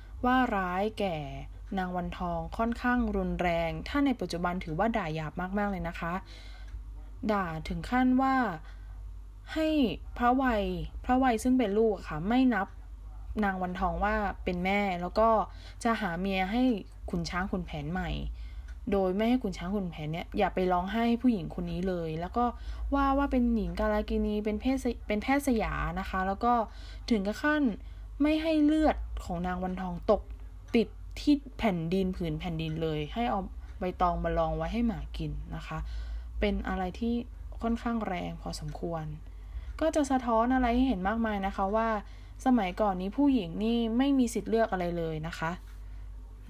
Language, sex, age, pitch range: Thai, female, 20-39, 170-230 Hz